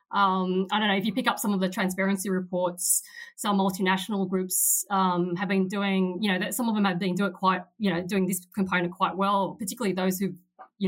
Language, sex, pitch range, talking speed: English, female, 180-200 Hz, 230 wpm